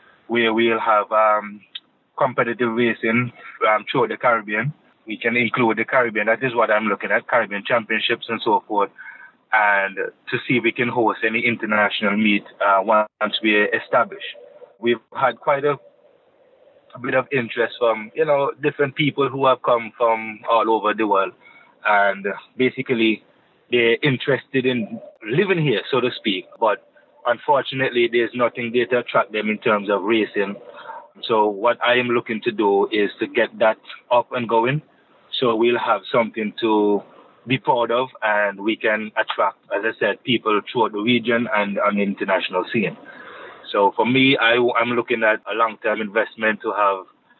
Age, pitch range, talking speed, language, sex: 20-39, 110-130 Hz, 170 wpm, English, male